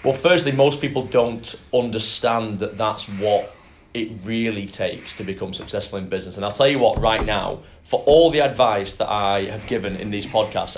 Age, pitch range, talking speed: 20-39, 100-125 Hz, 195 wpm